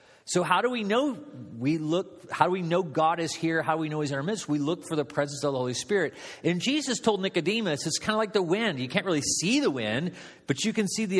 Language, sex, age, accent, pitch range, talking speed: English, male, 40-59, American, 135-180 Hz, 280 wpm